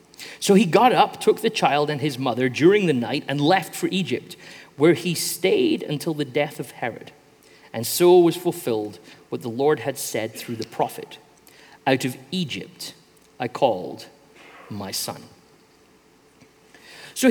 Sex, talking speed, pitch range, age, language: male, 155 wpm, 135-185 Hz, 40-59, English